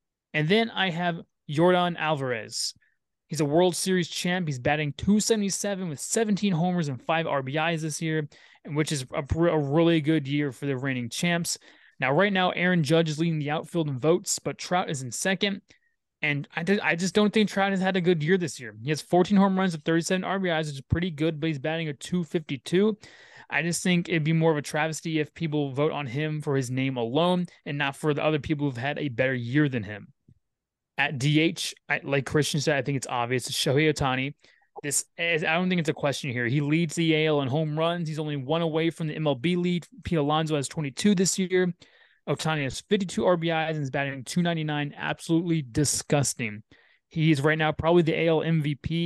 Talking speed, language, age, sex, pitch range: 205 wpm, English, 20-39, male, 145-175 Hz